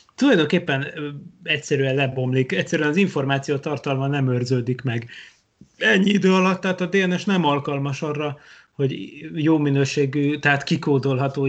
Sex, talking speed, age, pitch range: male, 125 wpm, 30-49, 130-160 Hz